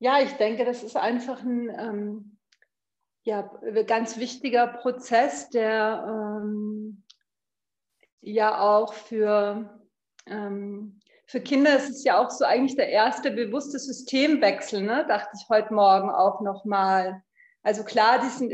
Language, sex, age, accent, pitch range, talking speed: German, female, 40-59, German, 205-250 Hz, 135 wpm